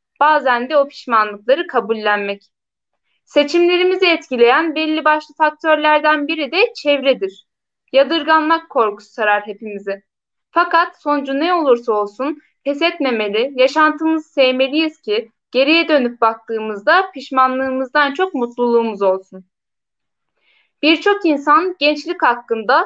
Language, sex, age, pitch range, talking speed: Turkish, female, 10-29, 230-325 Hz, 100 wpm